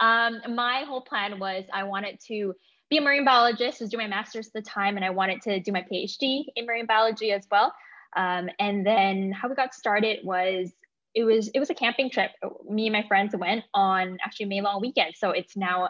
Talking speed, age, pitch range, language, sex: 225 wpm, 10-29, 185-235 Hz, English, female